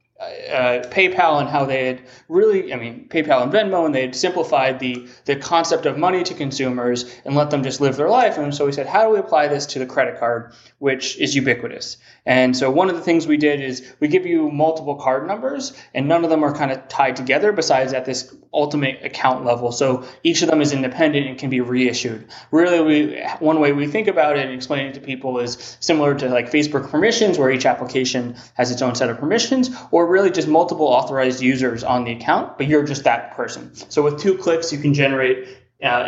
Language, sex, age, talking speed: English, male, 20-39, 225 wpm